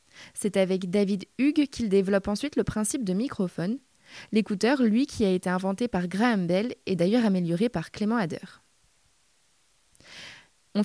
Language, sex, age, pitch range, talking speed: French, female, 20-39, 205-260 Hz, 150 wpm